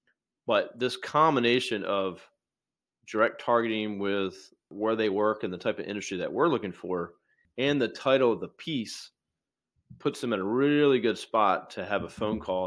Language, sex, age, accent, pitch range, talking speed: English, male, 30-49, American, 95-120 Hz, 175 wpm